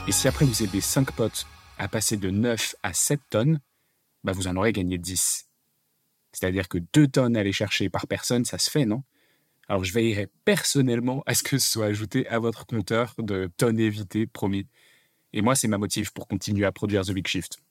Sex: male